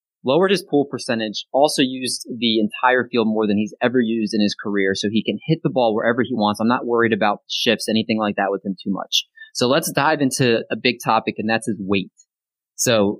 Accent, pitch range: American, 110-140 Hz